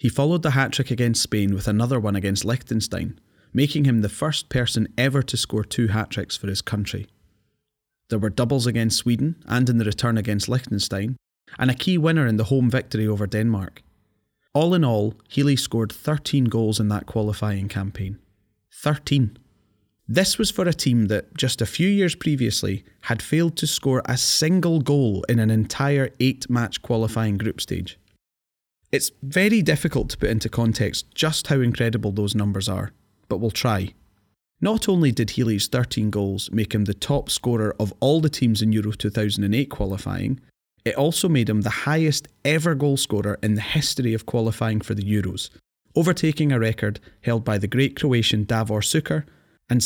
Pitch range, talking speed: 105-140 Hz, 175 wpm